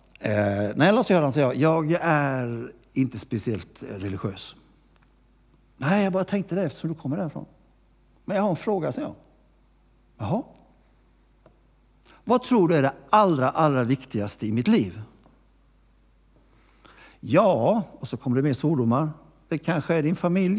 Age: 60-79